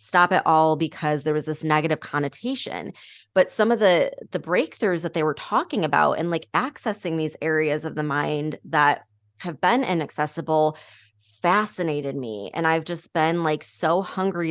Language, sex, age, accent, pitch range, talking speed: English, female, 20-39, American, 150-185 Hz, 170 wpm